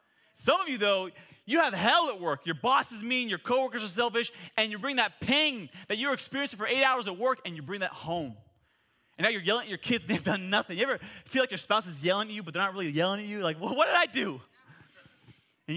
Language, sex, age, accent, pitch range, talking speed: English, male, 30-49, American, 150-215 Hz, 270 wpm